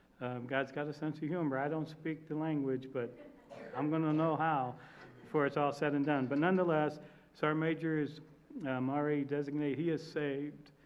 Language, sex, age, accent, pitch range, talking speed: English, male, 60-79, American, 130-150 Hz, 195 wpm